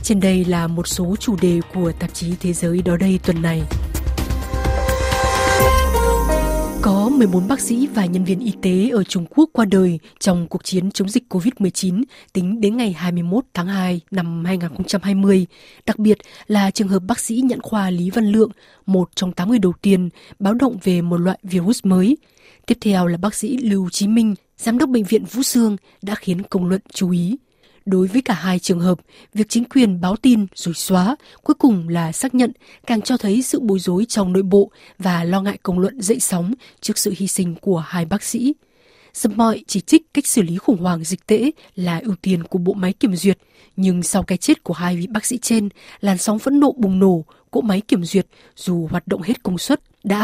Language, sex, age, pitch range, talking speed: Vietnamese, female, 20-39, 180-225 Hz, 210 wpm